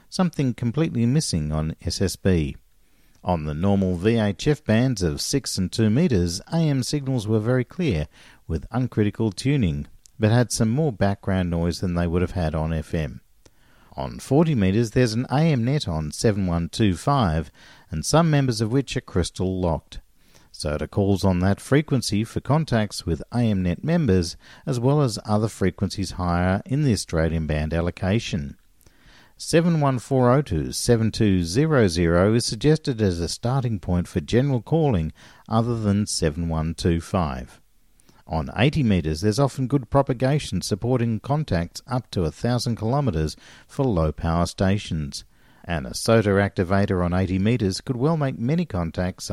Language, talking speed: English, 145 wpm